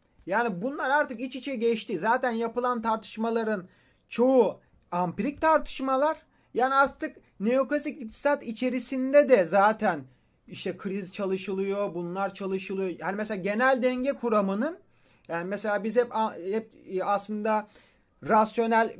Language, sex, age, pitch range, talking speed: Turkish, male, 30-49, 205-260 Hz, 115 wpm